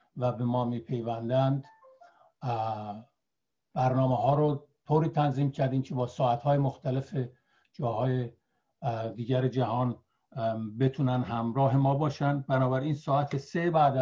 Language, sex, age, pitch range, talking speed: Persian, male, 60-79, 125-145 Hz, 105 wpm